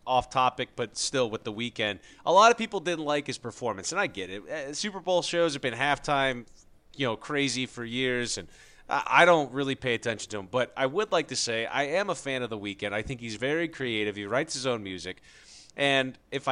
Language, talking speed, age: English, 230 wpm, 30-49